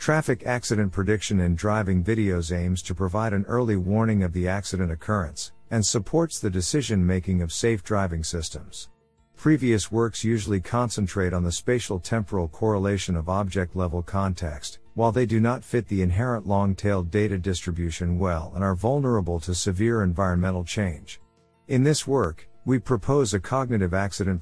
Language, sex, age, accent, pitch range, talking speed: English, male, 50-69, American, 90-115 Hz, 150 wpm